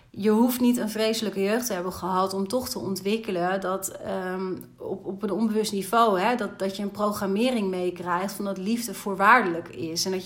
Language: Dutch